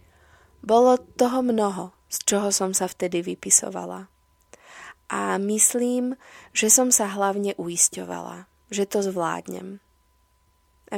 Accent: native